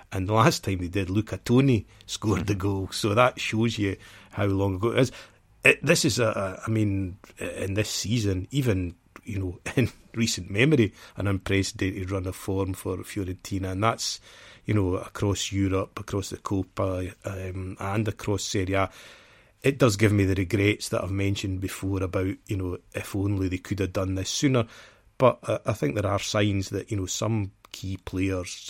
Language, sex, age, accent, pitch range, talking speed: English, male, 30-49, British, 95-105 Hz, 185 wpm